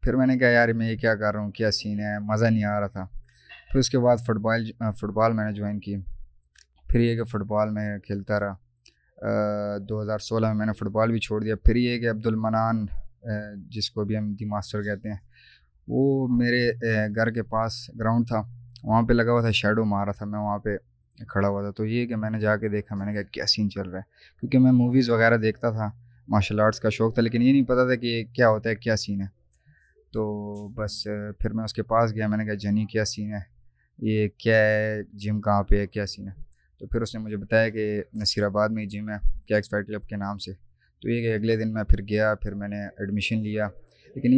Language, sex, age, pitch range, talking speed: Urdu, male, 20-39, 105-115 Hz, 245 wpm